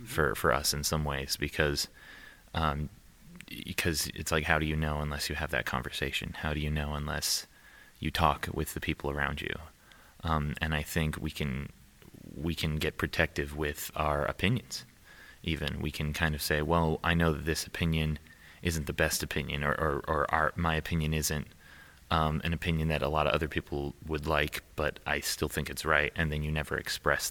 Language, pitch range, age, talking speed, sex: English, 75-80 Hz, 30-49, 200 wpm, male